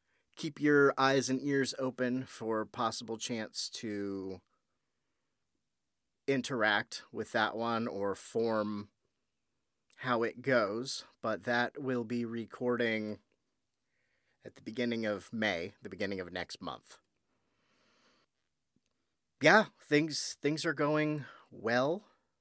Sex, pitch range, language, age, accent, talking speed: male, 110-130 Hz, English, 30-49, American, 105 wpm